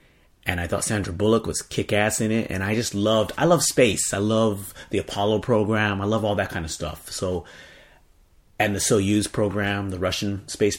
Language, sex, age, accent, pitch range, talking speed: English, male, 30-49, American, 90-115 Hz, 200 wpm